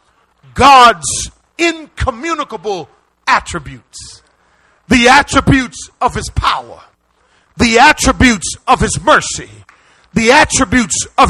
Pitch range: 235-315 Hz